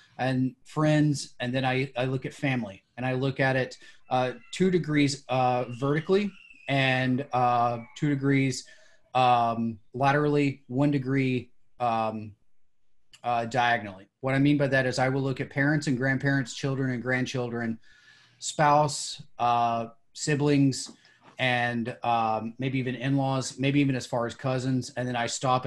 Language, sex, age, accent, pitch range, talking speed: English, male, 30-49, American, 120-135 Hz, 150 wpm